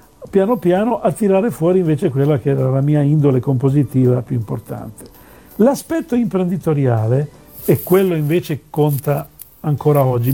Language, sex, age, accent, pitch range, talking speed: Italian, male, 50-69, native, 140-185 Hz, 135 wpm